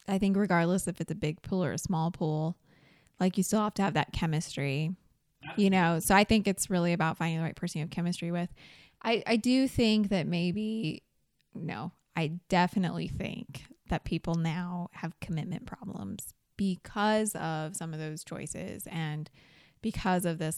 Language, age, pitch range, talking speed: English, 20-39, 160-195 Hz, 180 wpm